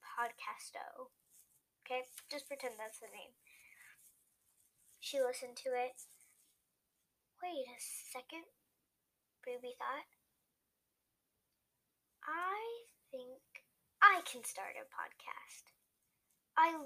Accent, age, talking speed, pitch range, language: American, 10-29, 85 wpm, 245-330 Hz, English